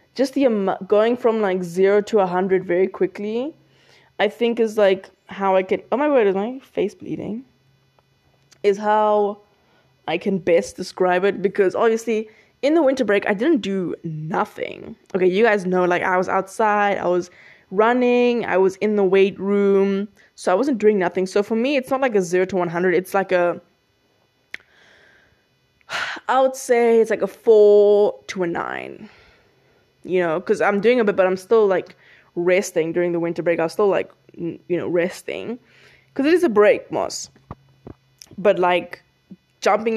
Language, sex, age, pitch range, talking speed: English, female, 20-39, 180-220 Hz, 180 wpm